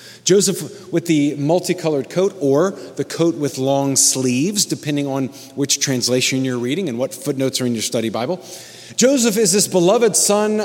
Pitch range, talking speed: 135-195 Hz, 170 wpm